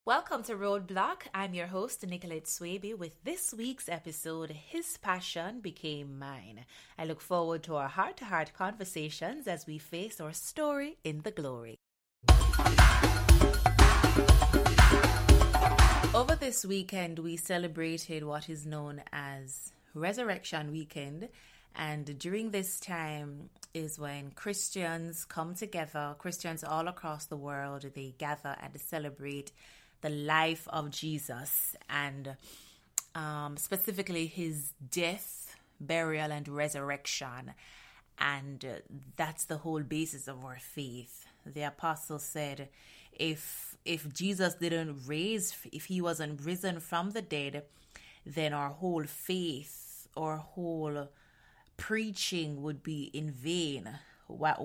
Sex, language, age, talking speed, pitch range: female, English, 20-39, 120 wpm, 145-175 Hz